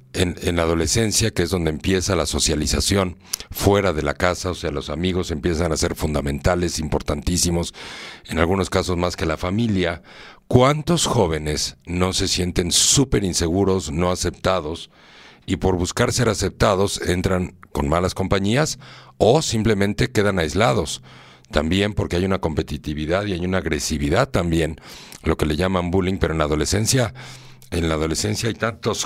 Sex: male